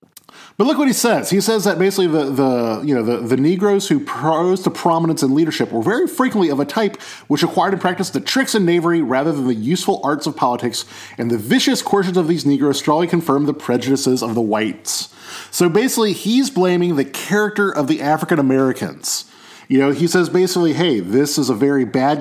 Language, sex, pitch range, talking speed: English, male, 125-185 Hz, 210 wpm